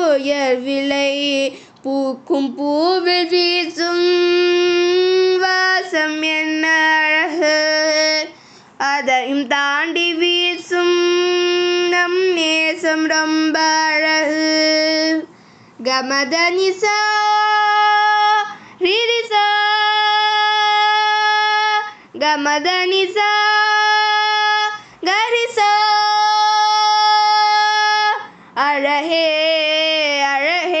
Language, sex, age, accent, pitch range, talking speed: Tamil, female, 20-39, native, 310-400 Hz, 30 wpm